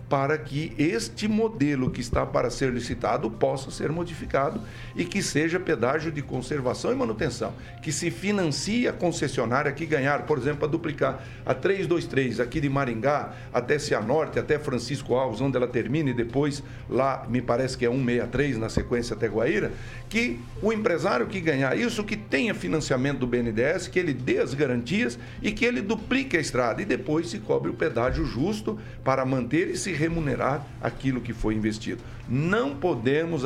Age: 60-79